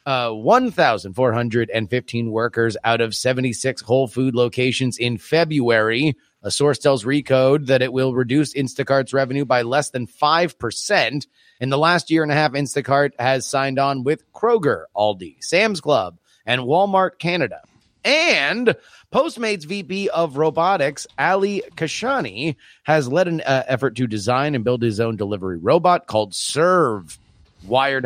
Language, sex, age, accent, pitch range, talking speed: English, male, 30-49, American, 115-155 Hz, 145 wpm